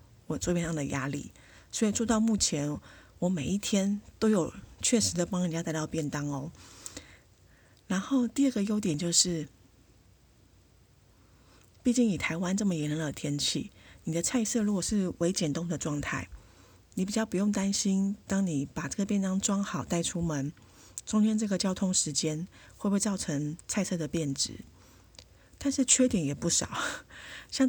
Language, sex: Chinese, female